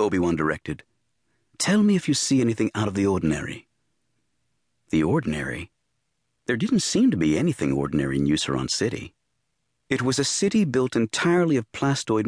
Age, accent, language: 50-69, American, English